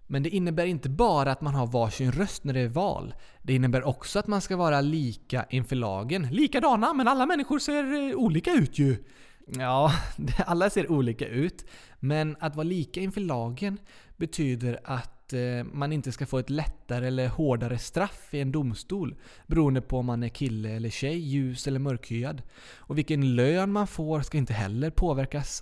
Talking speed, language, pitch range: 180 wpm, Swedish, 125-180 Hz